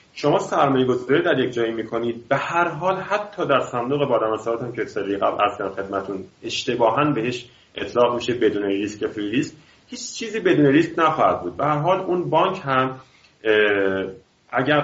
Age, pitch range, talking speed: 30-49, 110-150 Hz, 165 wpm